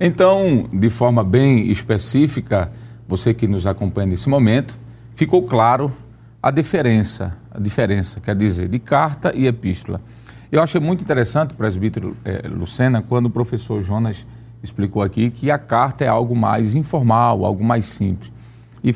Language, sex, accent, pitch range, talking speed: Portuguese, male, Brazilian, 105-125 Hz, 150 wpm